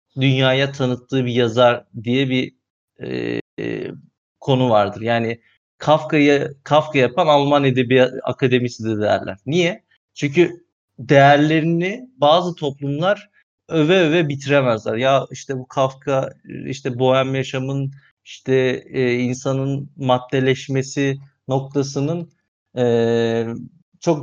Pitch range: 125-150 Hz